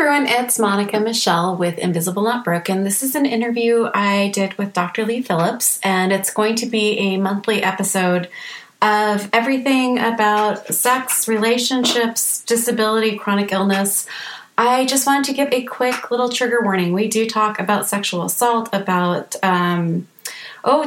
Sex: female